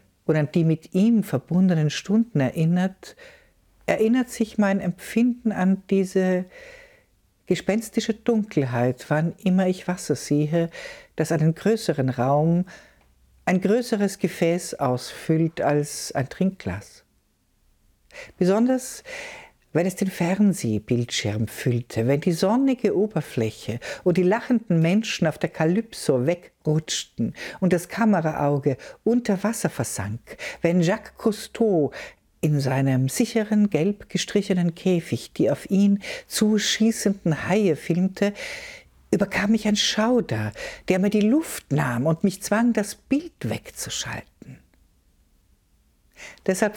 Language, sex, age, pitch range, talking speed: German, female, 60-79, 155-215 Hz, 110 wpm